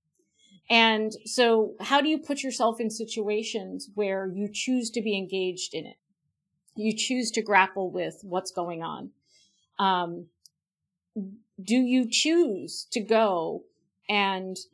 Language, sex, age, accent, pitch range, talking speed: English, female, 50-69, American, 190-230 Hz, 130 wpm